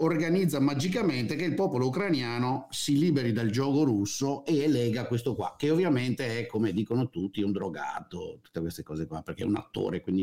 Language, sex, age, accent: Italian, male, 50-69, native